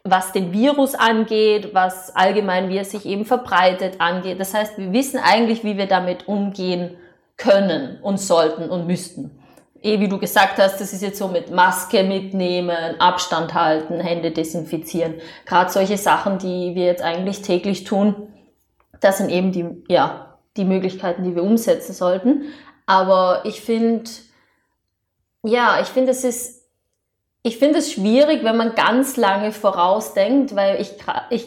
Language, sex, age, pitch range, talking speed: German, female, 20-39, 190-230 Hz, 155 wpm